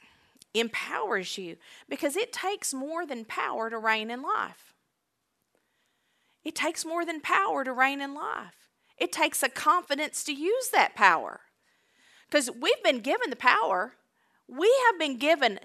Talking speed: 150 wpm